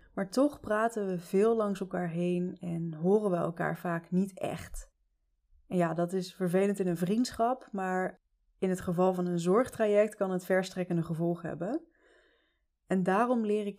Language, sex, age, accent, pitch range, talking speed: Dutch, female, 20-39, Dutch, 170-210 Hz, 170 wpm